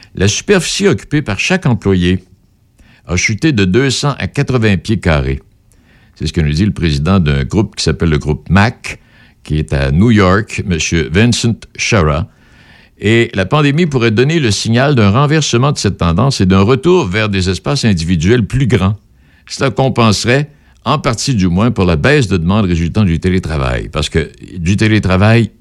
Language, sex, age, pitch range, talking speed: French, male, 60-79, 85-115 Hz, 175 wpm